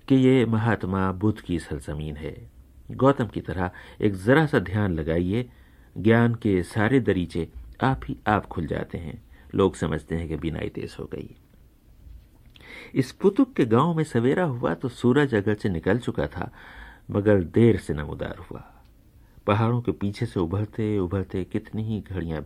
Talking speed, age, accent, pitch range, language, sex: 160 wpm, 50-69, native, 85-115 Hz, Hindi, male